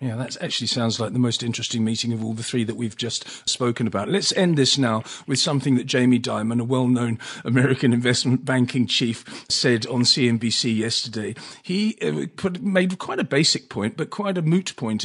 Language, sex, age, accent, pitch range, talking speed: English, male, 40-59, British, 125-170 Hz, 200 wpm